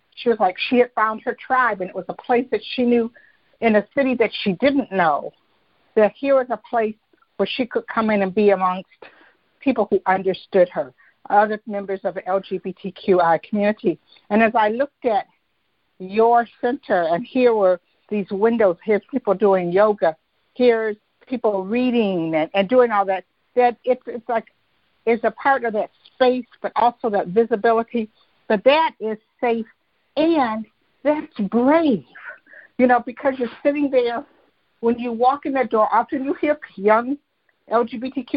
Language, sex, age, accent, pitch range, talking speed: English, female, 60-79, American, 200-250 Hz, 170 wpm